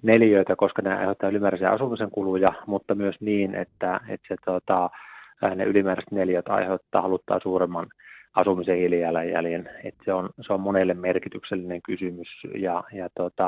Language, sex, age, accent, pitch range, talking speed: Finnish, male, 30-49, native, 90-105 Hz, 150 wpm